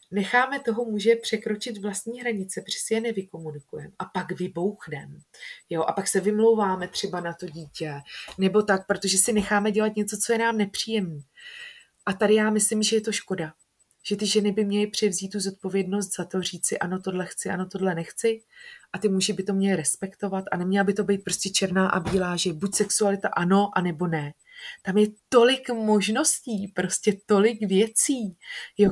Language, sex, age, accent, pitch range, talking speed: Czech, female, 20-39, native, 195-220 Hz, 185 wpm